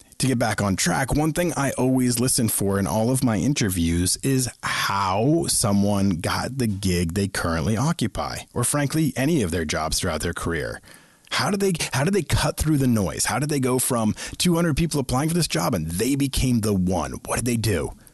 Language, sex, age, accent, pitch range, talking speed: English, male, 30-49, American, 105-135 Hz, 210 wpm